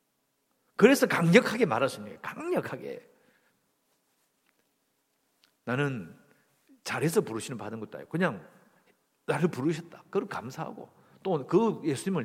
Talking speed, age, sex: 100 wpm, 50-69, male